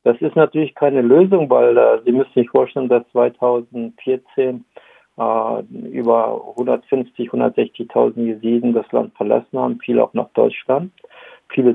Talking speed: 140 wpm